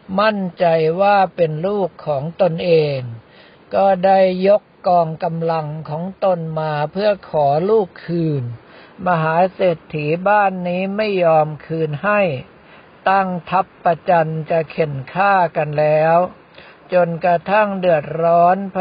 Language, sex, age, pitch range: Thai, male, 60-79, 160-195 Hz